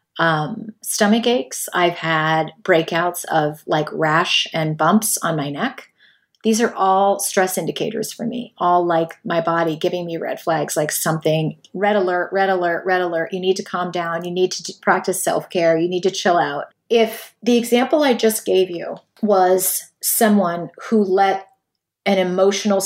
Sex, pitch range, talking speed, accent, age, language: female, 175-225 Hz, 170 wpm, American, 30-49, English